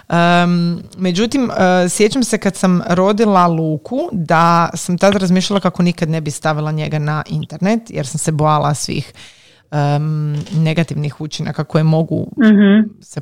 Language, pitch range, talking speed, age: Croatian, 165-200 Hz, 145 wpm, 30-49